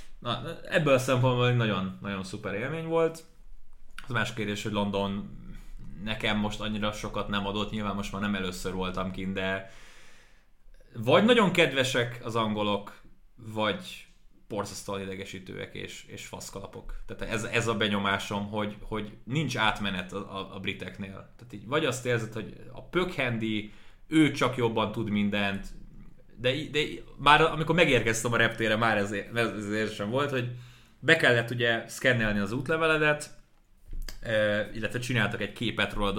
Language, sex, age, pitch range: Hungarian, male, 20-39, 100-130 Hz